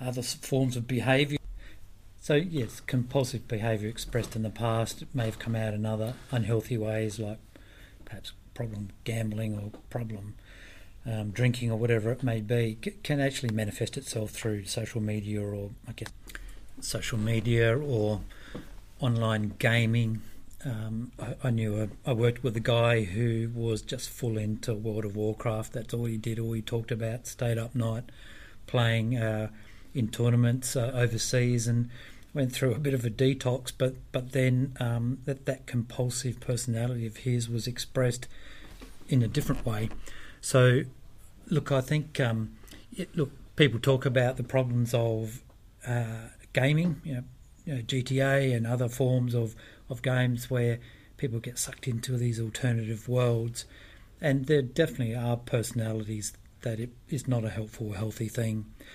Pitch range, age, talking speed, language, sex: 110-125 Hz, 40-59, 155 wpm, English, male